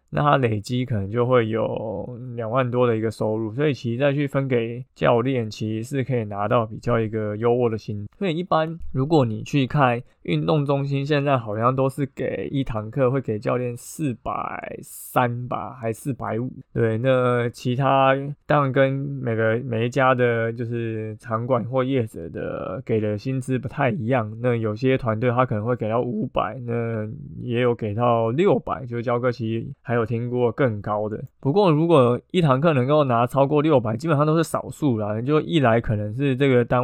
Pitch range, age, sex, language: 115-135 Hz, 20-39, male, Chinese